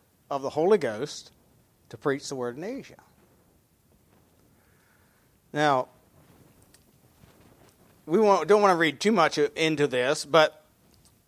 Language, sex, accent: English, male, American